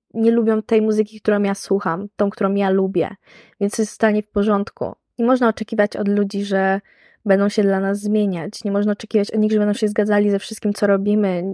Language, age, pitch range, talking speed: Polish, 20-39, 200-225 Hz, 215 wpm